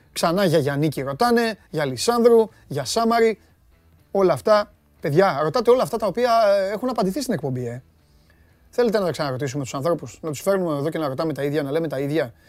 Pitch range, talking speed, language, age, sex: 140-215 Hz, 195 wpm, Greek, 30-49, male